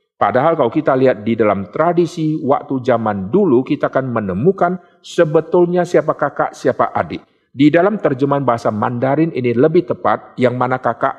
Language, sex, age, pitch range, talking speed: Indonesian, male, 50-69, 130-175 Hz, 155 wpm